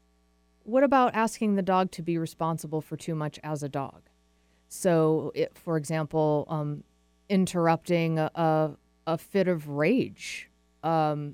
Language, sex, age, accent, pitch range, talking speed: English, female, 30-49, American, 150-190 Hz, 140 wpm